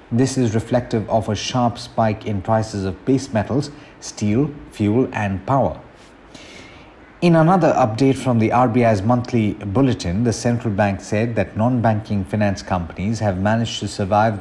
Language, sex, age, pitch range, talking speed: English, male, 50-69, 105-125 Hz, 150 wpm